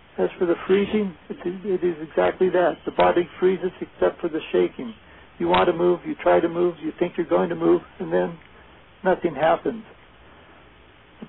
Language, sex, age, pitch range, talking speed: English, male, 60-79, 165-190 Hz, 180 wpm